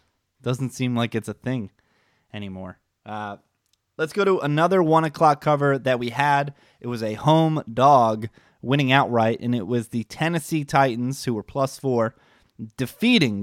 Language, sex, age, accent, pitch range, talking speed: English, male, 20-39, American, 110-140 Hz, 160 wpm